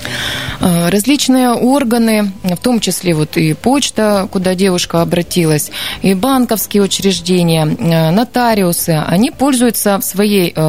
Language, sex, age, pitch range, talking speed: Russian, female, 20-39, 170-230 Hz, 105 wpm